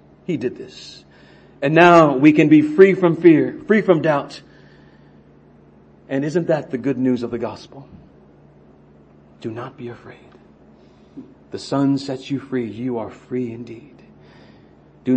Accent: American